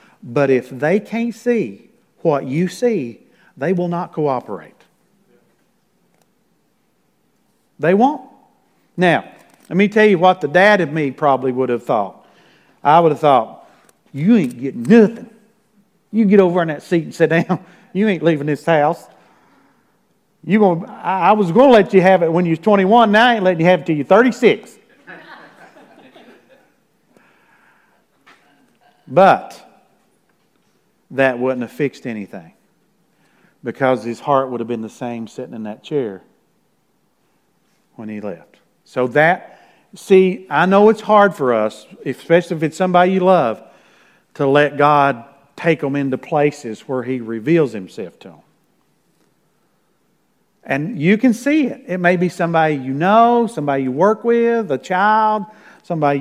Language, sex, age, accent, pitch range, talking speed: English, male, 50-69, American, 140-215 Hz, 150 wpm